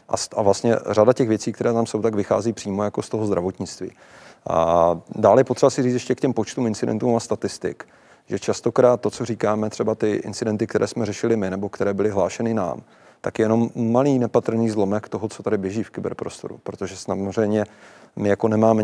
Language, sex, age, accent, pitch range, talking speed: Czech, male, 30-49, native, 100-110 Hz, 200 wpm